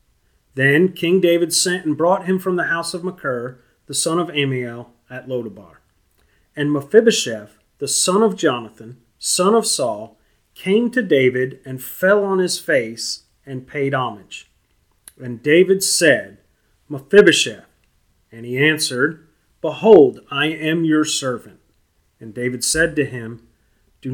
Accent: American